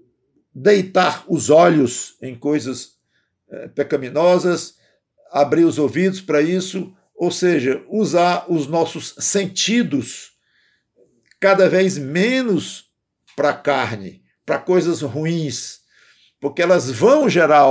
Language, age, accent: Portuguese, 50-69, Brazilian